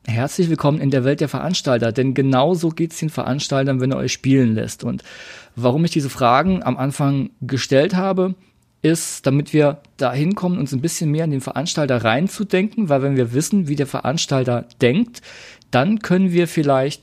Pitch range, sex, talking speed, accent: 130-175 Hz, male, 185 wpm, German